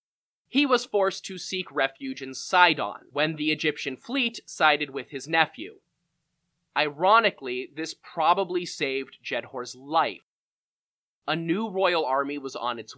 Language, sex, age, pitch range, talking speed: English, male, 20-39, 140-180 Hz, 135 wpm